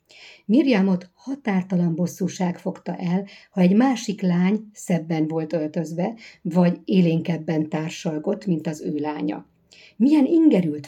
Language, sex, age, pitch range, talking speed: Hungarian, female, 60-79, 170-220 Hz, 115 wpm